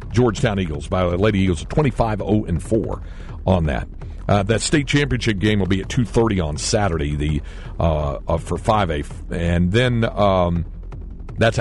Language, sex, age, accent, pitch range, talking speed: English, male, 60-79, American, 90-130 Hz, 155 wpm